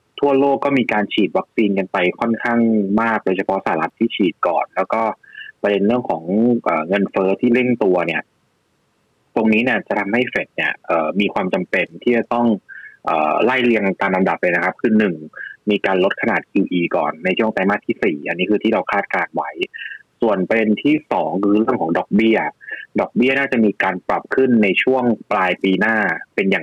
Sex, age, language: male, 30-49, Thai